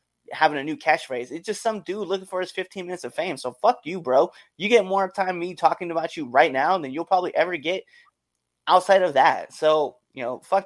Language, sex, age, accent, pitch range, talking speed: English, male, 20-39, American, 135-190 Hz, 230 wpm